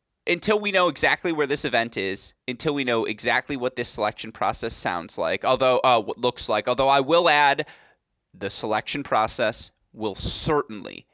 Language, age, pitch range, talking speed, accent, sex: English, 20-39, 105-135 Hz, 170 wpm, American, male